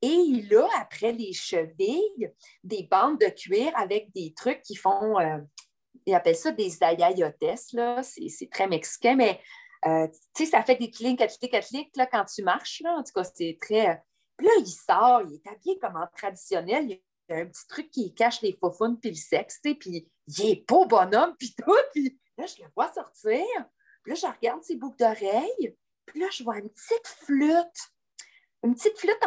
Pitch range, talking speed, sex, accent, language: 220-370 Hz, 195 wpm, female, Canadian, French